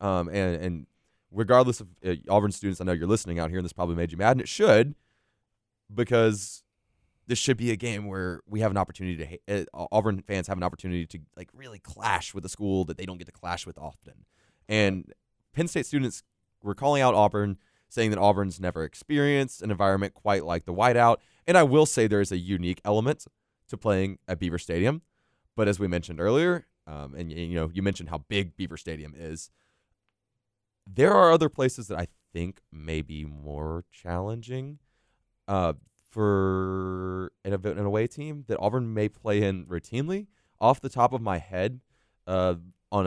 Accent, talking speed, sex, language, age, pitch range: American, 190 wpm, male, English, 20-39, 85-105 Hz